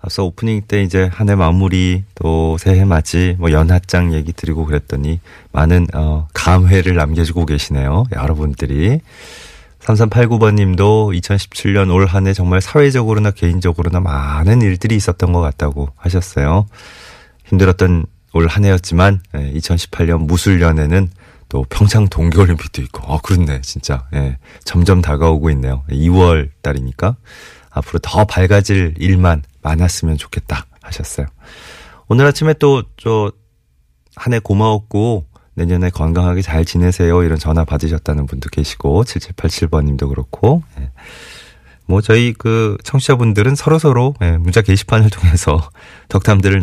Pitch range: 80-100 Hz